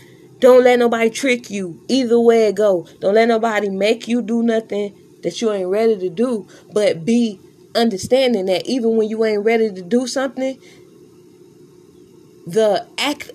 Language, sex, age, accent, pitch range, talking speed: English, female, 20-39, American, 190-245 Hz, 160 wpm